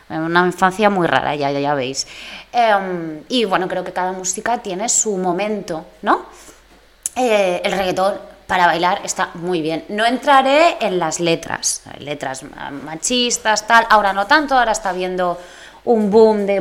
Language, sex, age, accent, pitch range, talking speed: Spanish, female, 20-39, Spanish, 175-230 Hz, 155 wpm